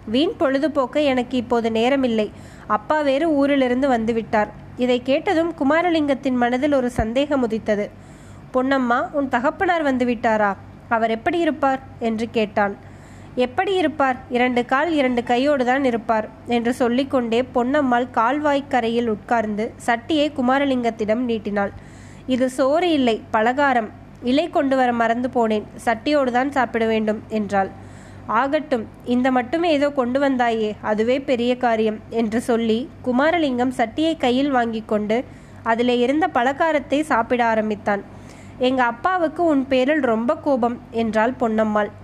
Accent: native